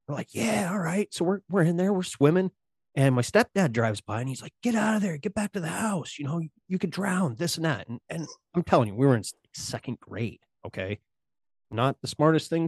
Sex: male